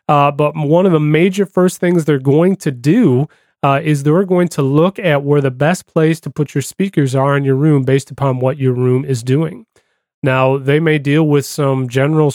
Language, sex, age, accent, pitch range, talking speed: English, male, 30-49, American, 140-165 Hz, 220 wpm